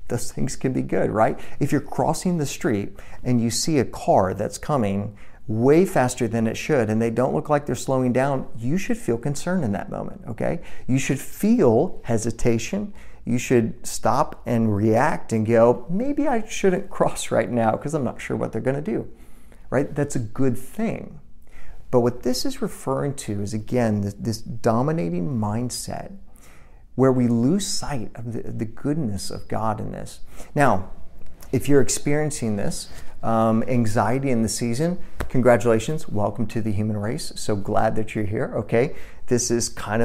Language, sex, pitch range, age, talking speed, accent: English, male, 110-140 Hz, 40-59, 175 wpm, American